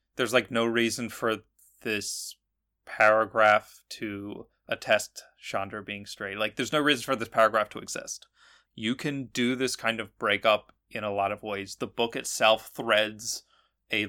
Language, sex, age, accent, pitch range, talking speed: English, male, 30-49, American, 105-120 Hz, 160 wpm